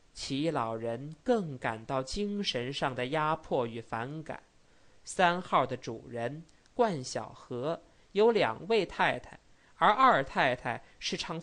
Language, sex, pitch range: Chinese, male, 135-210 Hz